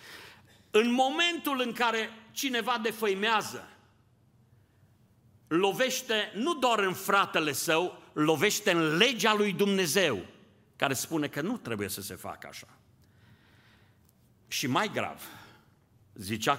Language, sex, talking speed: Romanian, male, 110 wpm